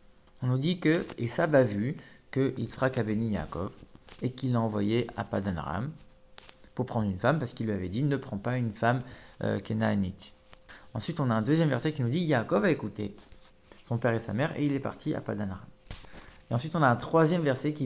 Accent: French